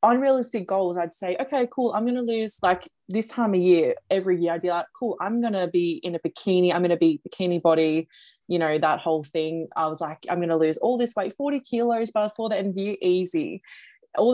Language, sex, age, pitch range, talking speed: English, female, 20-39, 170-195 Hz, 220 wpm